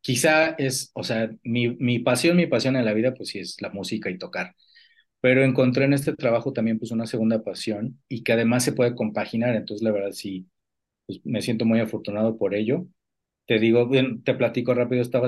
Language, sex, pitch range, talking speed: Spanish, male, 105-130 Hz, 210 wpm